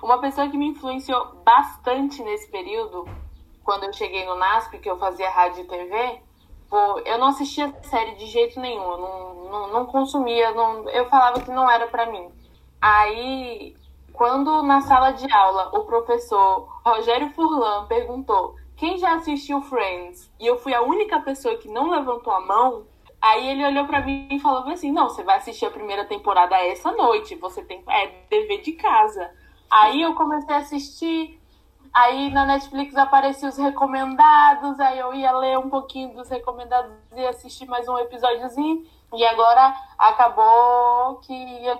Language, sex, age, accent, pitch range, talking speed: Portuguese, female, 10-29, Brazilian, 220-280 Hz, 170 wpm